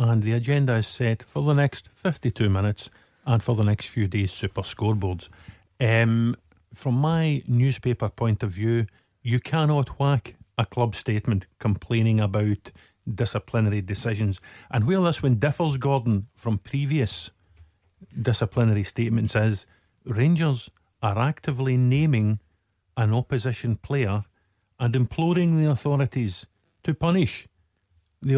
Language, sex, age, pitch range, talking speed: English, male, 50-69, 110-135 Hz, 125 wpm